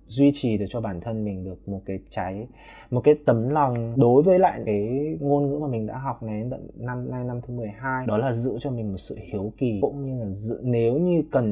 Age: 20-39